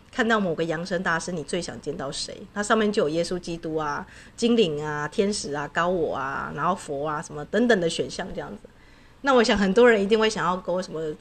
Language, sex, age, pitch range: Chinese, female, 30-49, 175-230 Hz